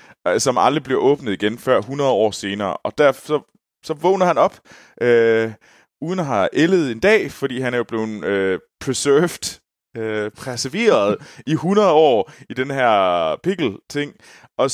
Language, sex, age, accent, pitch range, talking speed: Danish, male, 20-39, native, 95-130 Hz, 165 wpm